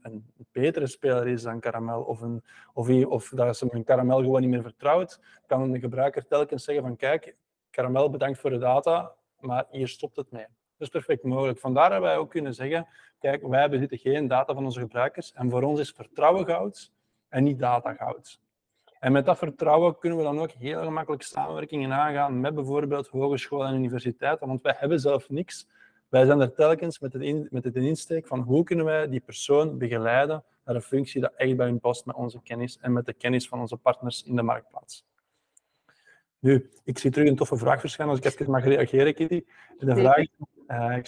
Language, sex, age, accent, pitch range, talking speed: Dutch, male, 20-39, Dutch, 125-145 Hz, 205 wpm